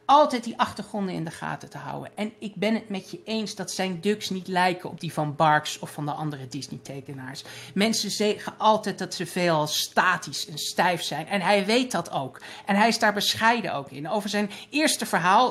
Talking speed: 215 wpm